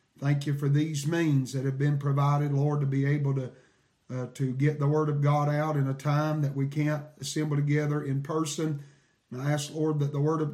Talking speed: 230 wpm